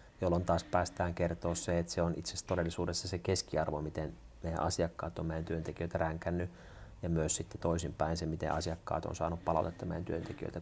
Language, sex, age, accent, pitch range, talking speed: Finnish, male, 30-49, native, 85-100 Hz, 180 wpm